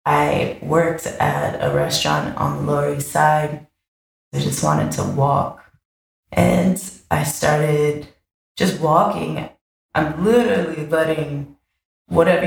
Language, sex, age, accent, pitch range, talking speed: English, female, 20-39, American, 140-170 Hz, 115 wpm